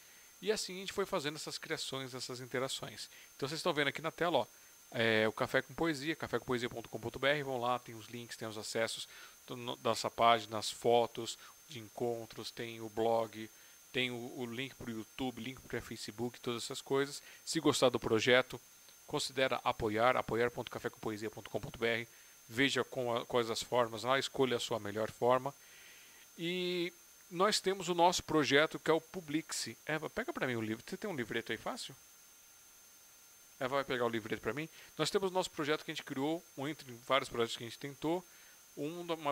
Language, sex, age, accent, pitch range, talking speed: Portuguese, male, 40-59, Brazilian, 115-155 Hz, 185 wpm